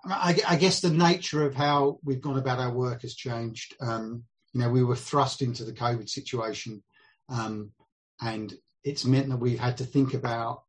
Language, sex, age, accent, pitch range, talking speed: English, male, 40-59, British, 115-135 Hz, 190 wpm